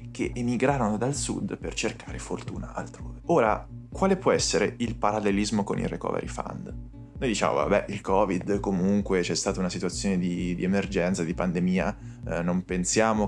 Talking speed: 165 wpm